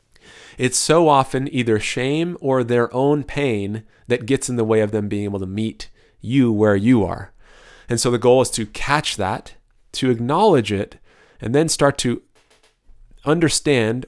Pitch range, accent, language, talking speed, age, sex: 110-140 Hz, American, English, 170 wpm, 30-49, male